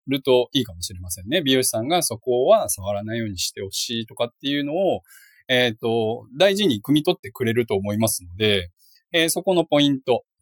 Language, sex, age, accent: Japanese, male, 20-39, native